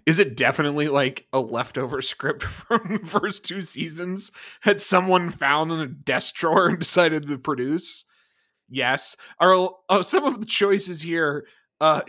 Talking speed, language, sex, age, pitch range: 160 wpm, English, male, 30-49, 150-210 Hz